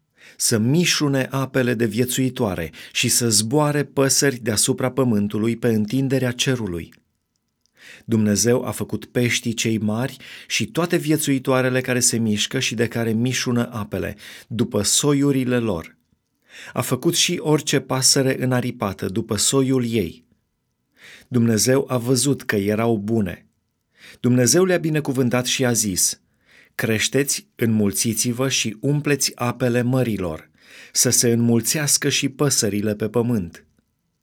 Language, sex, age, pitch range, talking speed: Romanian, male, 30-49, 110-135 Hz, 120 wpm